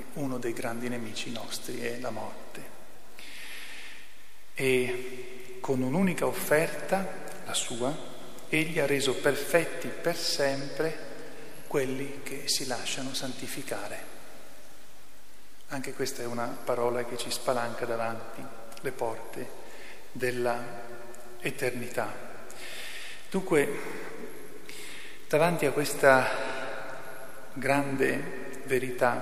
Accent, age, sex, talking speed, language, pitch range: native, 40-59, male, 90 wpm, Italian, 120-140 Hz